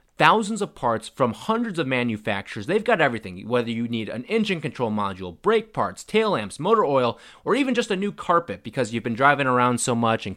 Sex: male